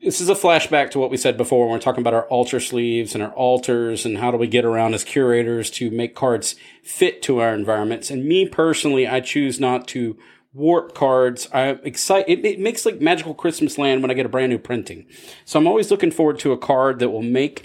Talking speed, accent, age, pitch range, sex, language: 240 wpm, American, 40-59, 120-155 Hz, male, English